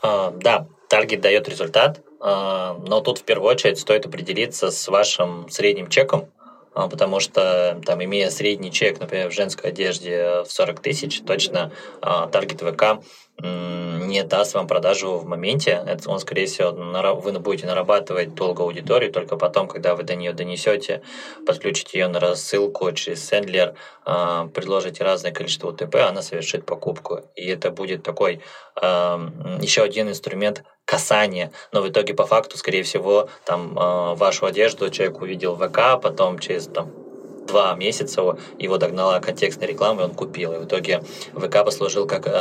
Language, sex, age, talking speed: Russian, male, 20-39, 155 wpm